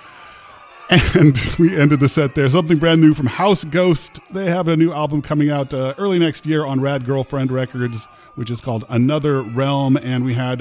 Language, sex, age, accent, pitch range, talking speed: English, male, 40-59, American, 120-160 Hz, 200 wpm